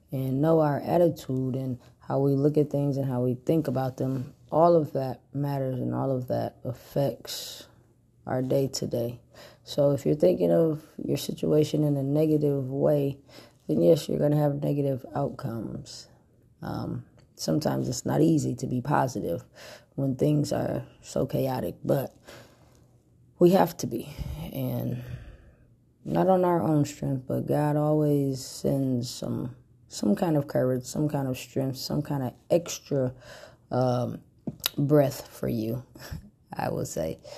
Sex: female